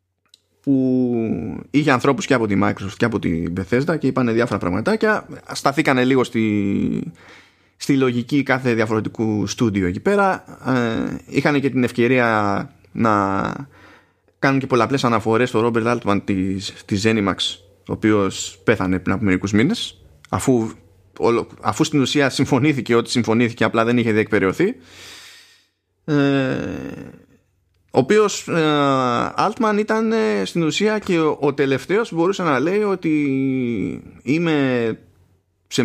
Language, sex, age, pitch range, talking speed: Greek, male, 20-39, 105-145 Hz, 125 wpm